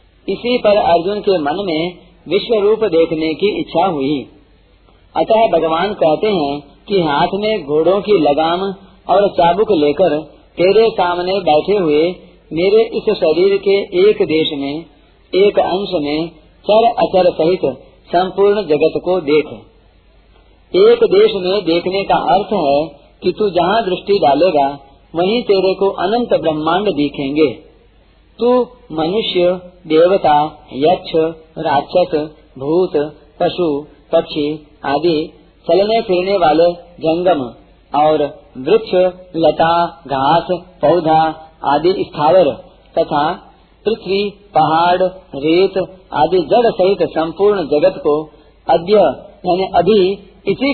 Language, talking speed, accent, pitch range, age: Hindi, 115 wpm, native, 155-200 Hz, 50-69